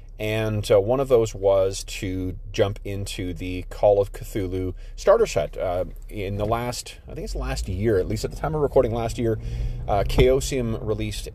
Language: English